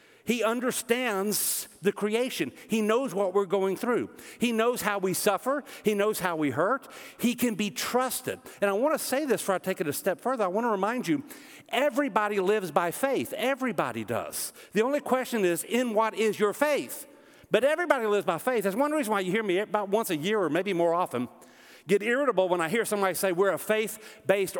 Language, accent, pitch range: English, American, 200-275 Hz